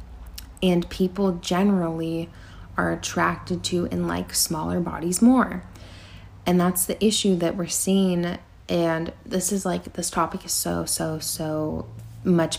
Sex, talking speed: female, 140 wpm